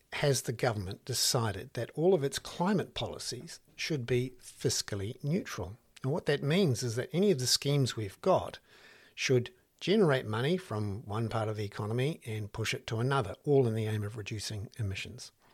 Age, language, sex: 60-79, English, male